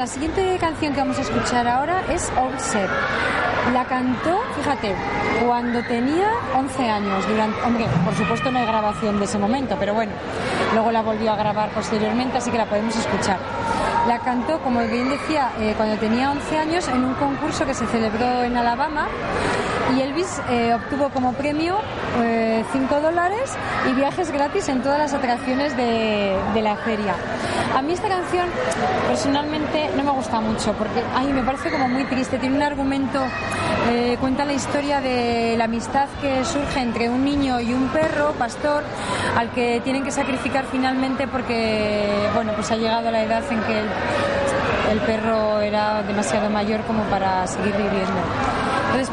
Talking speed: 175 wpm